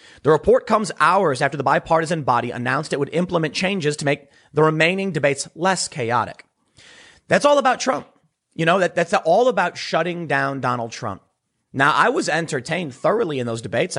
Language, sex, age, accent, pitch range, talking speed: English, male, 30-49, American, 130-185 Hz, 180 wpm